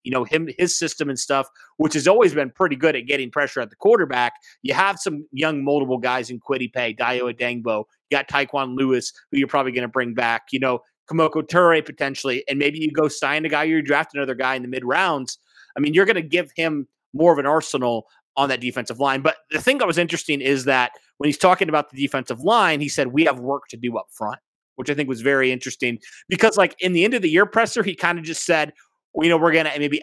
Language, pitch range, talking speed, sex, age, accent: English, 130-155 Hz, 250 wpm, male, 30-49, American